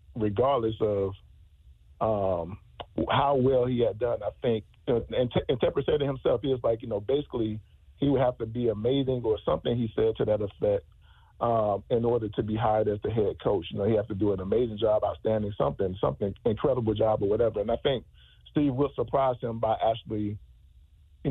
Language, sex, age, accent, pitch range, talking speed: English, male, 40-59, American, 105-125 Hz, 200 wpm